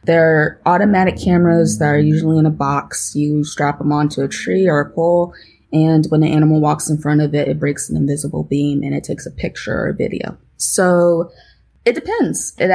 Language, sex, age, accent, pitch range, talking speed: English, female, 20-39, American, 150-175 Hz, 205 wpm